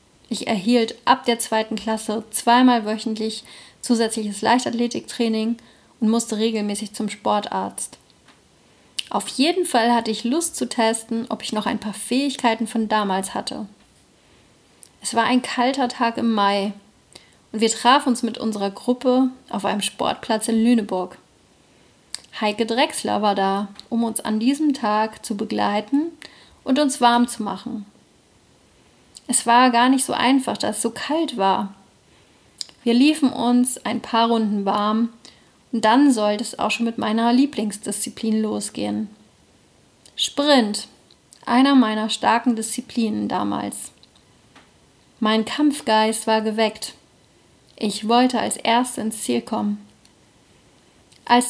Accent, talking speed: German, 130 wpm